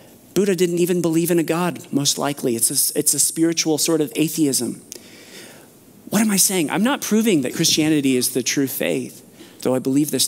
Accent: American